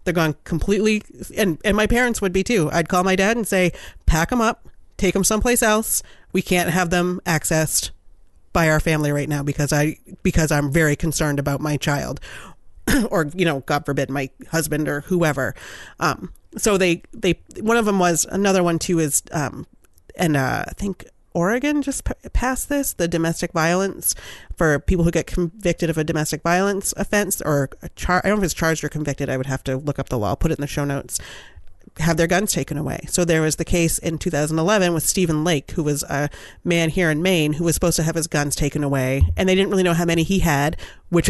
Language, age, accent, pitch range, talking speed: English, 30-49, American, 150-190 Hz, 220 wpm